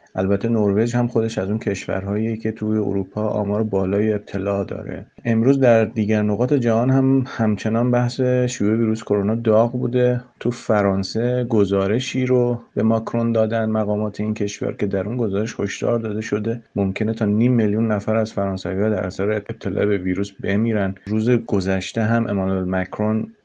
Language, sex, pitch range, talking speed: Persian, male, 100-120 Hz, 160 wpm